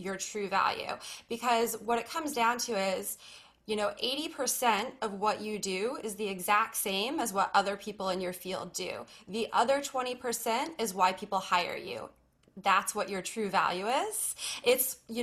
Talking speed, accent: 175 wpm, American